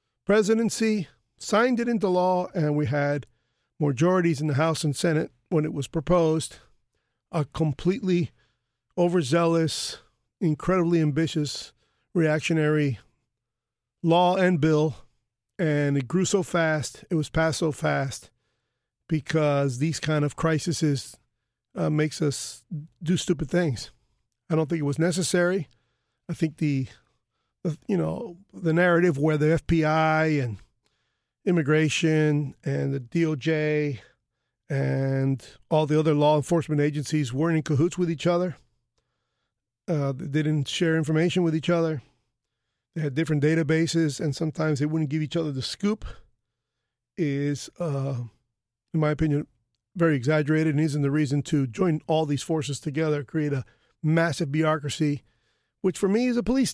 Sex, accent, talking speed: male, American, 135 wpm